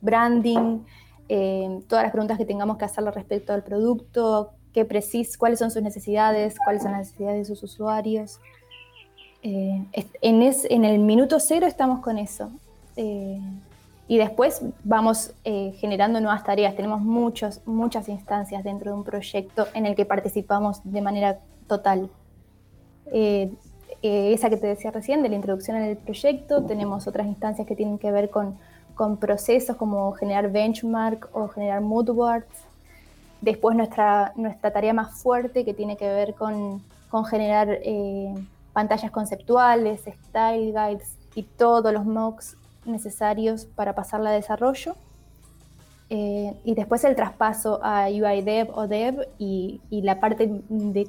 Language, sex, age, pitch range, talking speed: Spanish, female, 20-39, 200-225 Hz, 150 wpm